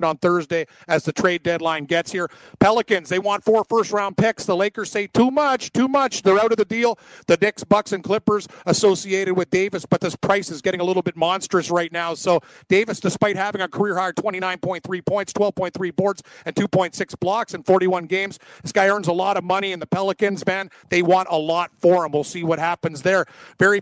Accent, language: American, English